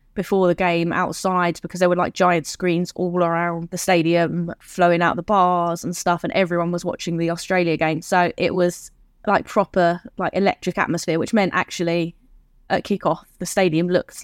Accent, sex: British, female